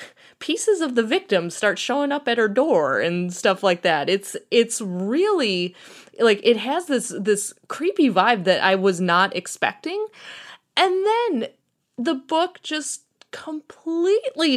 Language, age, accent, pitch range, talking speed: English, 20-39, American, 185-265 Hz, 145 wpm